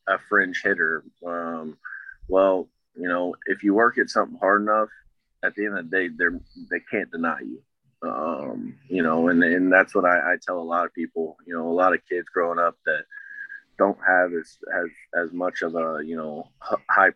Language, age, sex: English, 20-39, male